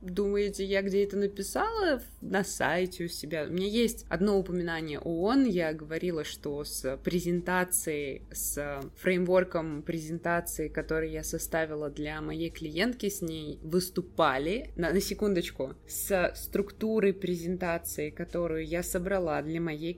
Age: 20-39